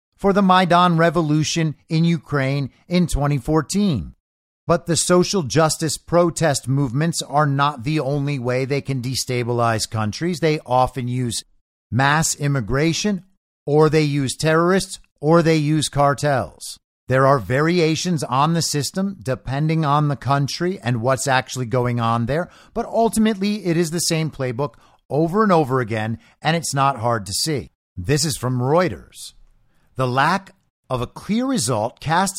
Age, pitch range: 50-69, 130-175 Hz